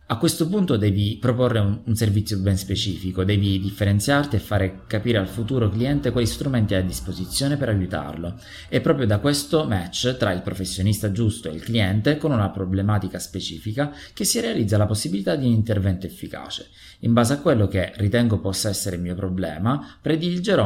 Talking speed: 175 wpm